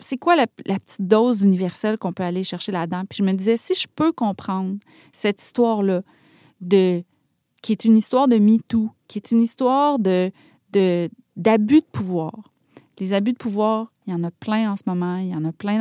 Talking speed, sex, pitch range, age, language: 210 wpm, female, 195-255 Hz, 30-49, French